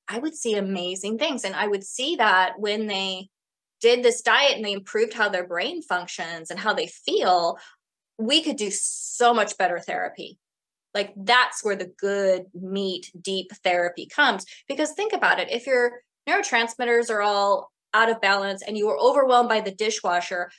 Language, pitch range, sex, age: English, 190-235 Hz, female, 20-39